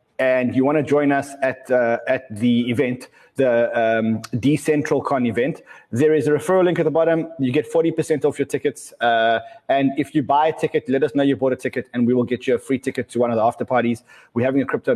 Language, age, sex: English, 20-39, male